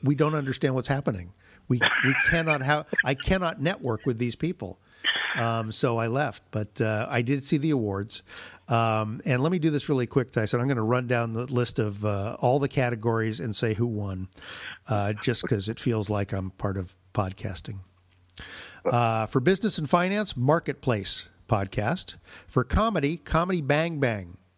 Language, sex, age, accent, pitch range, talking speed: English, male, 50-69, American, 110-150 Hz, 180 wpm